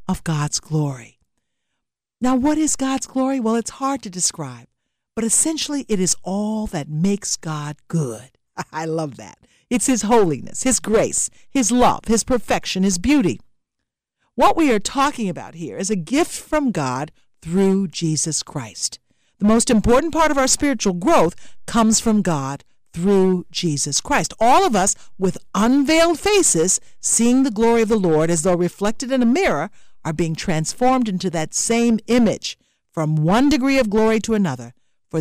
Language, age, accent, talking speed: English, 50-69, American, 165 wpm